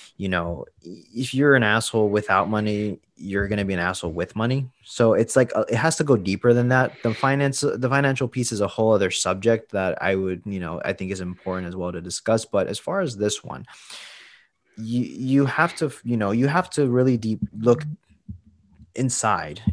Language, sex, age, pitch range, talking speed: English, male, 20-39, 100-130 Hz, 205 wpm